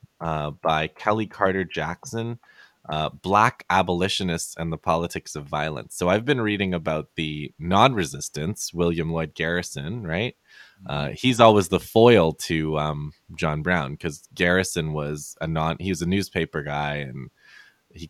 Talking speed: 150 wpm